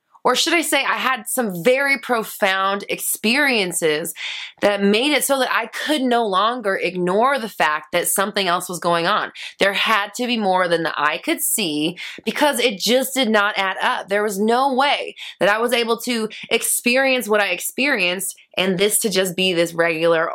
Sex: female